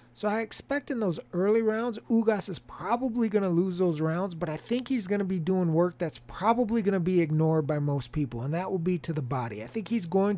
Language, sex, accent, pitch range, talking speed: English, male, American, 155-200 Hz, 255 wpm